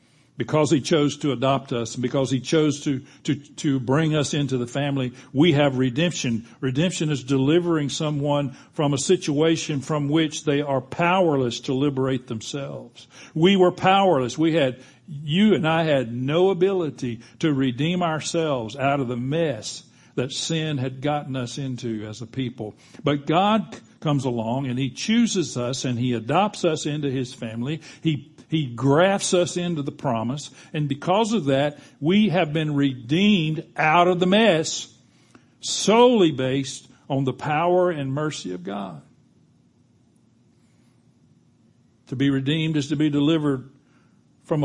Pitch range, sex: 125-160 Hz, male